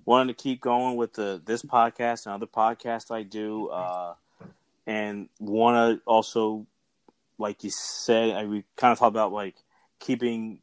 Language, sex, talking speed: English, male, 165 wpm